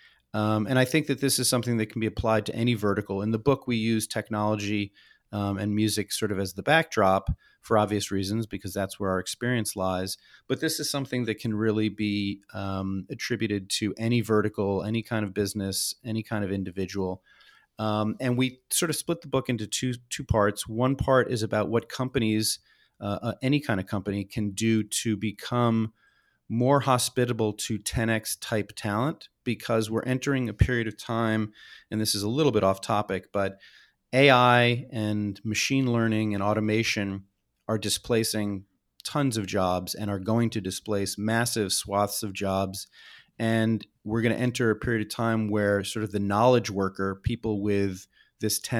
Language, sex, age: English, male, 30-49